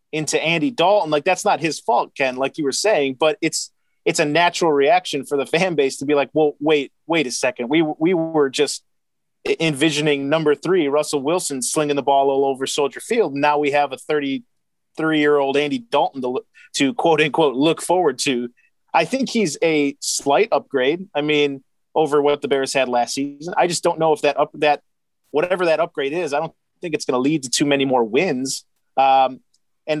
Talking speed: 205 wpm